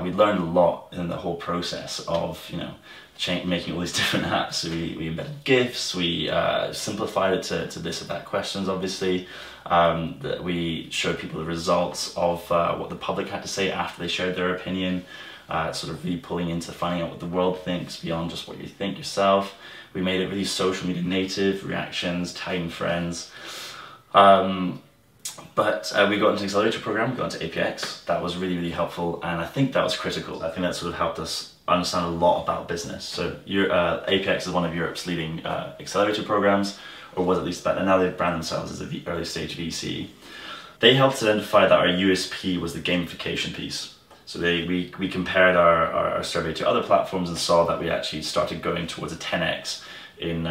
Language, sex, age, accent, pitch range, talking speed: English, male, 20-39, British, 85-95 Hz, 210 wpm